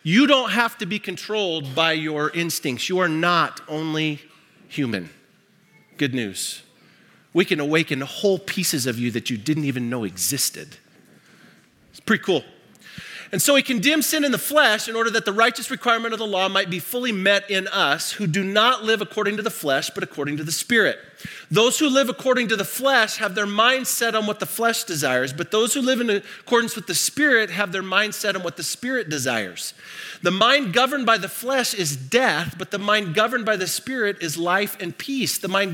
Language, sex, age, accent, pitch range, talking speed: English, male, 40-59, American, 150-220 Hz, 205 wpm